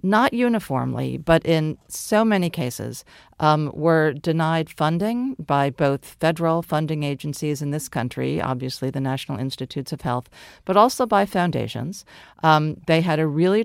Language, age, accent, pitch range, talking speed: English, 50-69, American, 145-185 Hz, 150 wpm